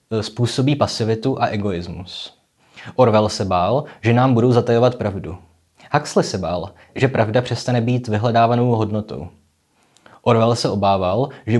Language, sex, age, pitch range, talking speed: Czech, male, 20-39, 95-120 Hz, 130 wpm